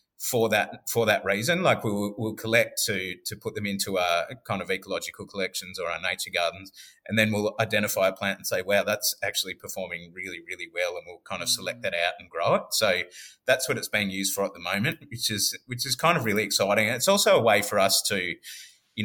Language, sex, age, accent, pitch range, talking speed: English, male, 30-49, Australian, 95-115 Hz, 240 wpm